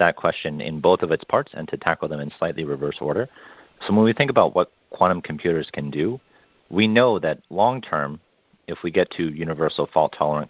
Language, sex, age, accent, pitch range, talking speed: English, male, 40-59, American, 75-90 Hz, 200 wpm